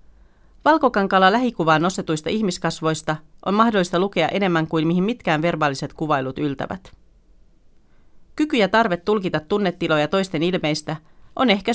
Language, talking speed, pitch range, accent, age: Finnish, 115 wpm, 155-195 Hz, native, 40-59